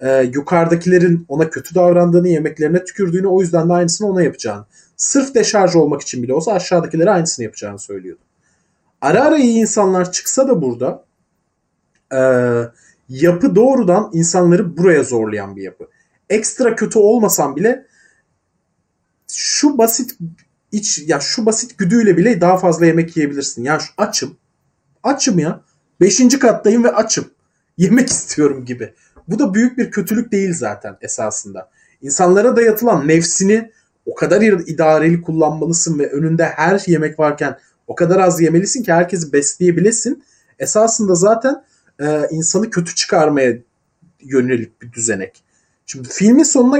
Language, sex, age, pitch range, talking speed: Turkish, male, 30-49, 150-215 Hz, 135 wpm